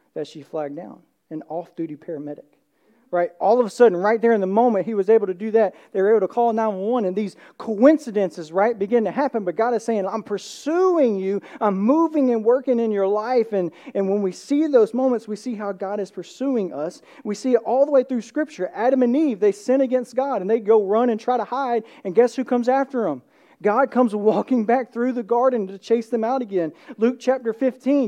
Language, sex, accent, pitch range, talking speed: English, male, American, 195-250 Hz, 230 wpm